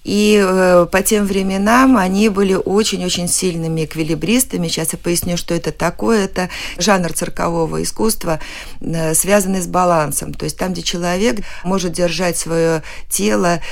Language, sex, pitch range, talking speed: Russian, female, 155-195 Hz, 145 wpm